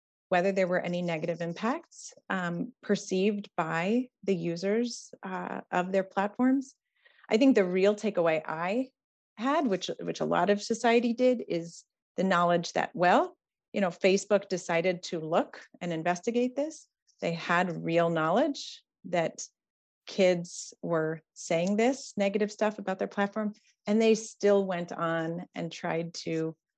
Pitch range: 170-215 Hz